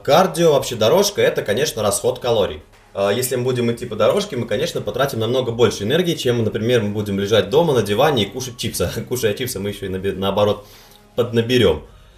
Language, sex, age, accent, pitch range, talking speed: Russian, male, 20-39, native, 95-125 Hz, 180 wpm